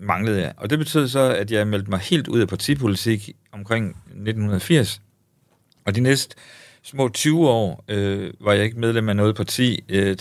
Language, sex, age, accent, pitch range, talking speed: Danish, male, 50-69, native, 95-120 Hz, 180 wpm